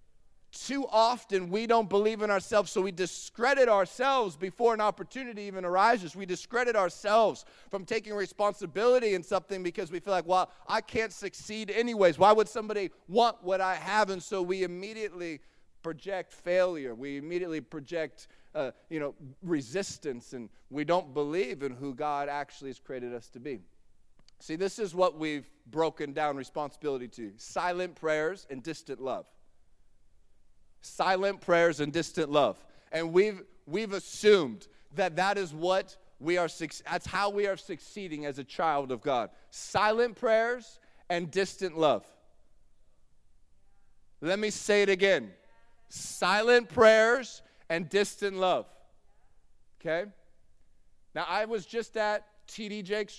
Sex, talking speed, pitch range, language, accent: male, 145 wpm, 155-205 Hz, English, American